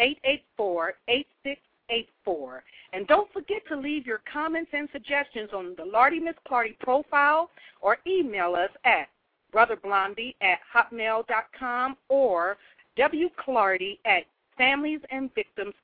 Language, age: English, 50-69